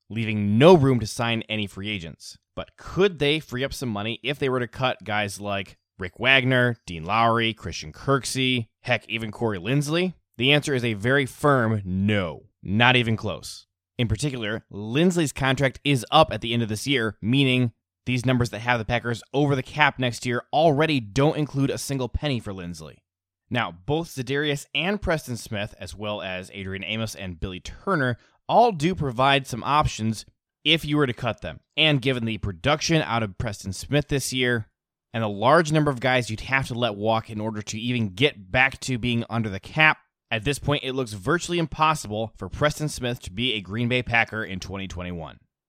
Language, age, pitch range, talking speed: English, 20-39, 105-140 Hz, 195 wpm